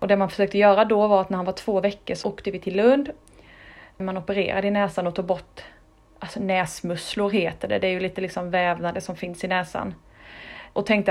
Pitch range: 185-215 Hz